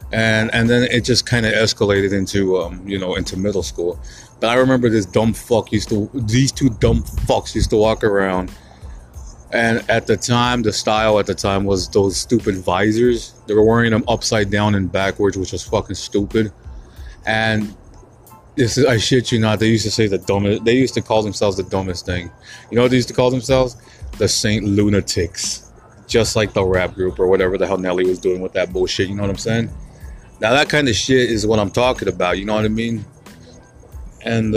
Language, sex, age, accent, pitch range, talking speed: English, male, 20-39, American, 95-120 Hz, 215 wpm